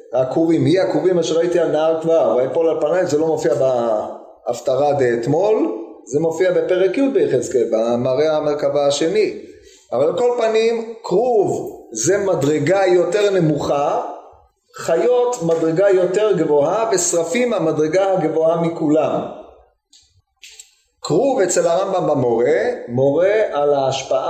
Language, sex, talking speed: Hebrew, male, 120 wpm